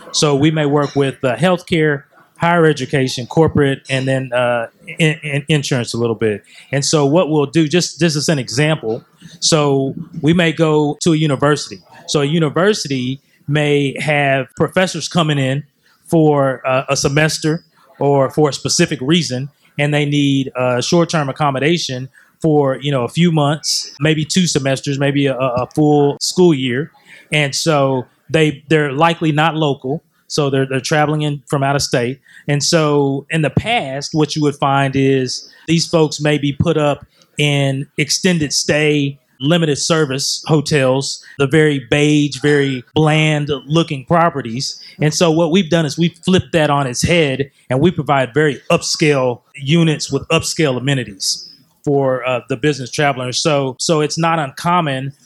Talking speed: 165 wpm